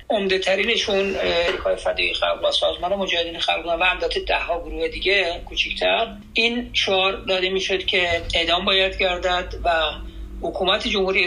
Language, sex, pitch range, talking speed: Persian, male, 170-205 Hz, 150 wpm